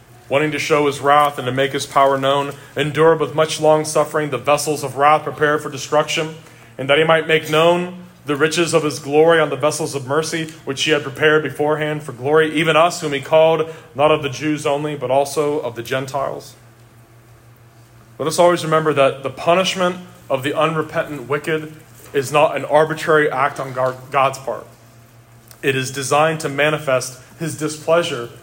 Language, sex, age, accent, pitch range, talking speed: English, male, 30-49, American, 125-160 Hz, 185 wpm